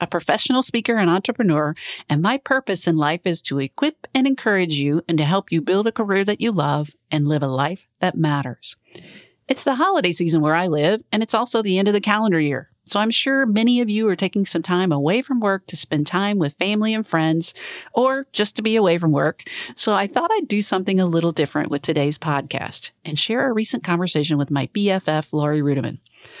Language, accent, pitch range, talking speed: English, American, 150-215 Hz, 220 wpm